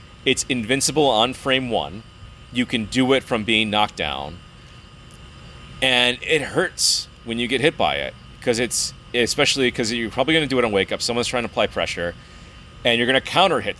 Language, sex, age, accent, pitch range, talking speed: English, male, 30-49, American, 110-145 Hz, 200 wpm